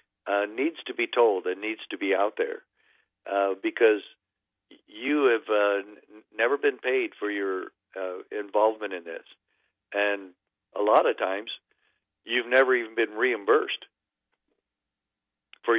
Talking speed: 135 wpm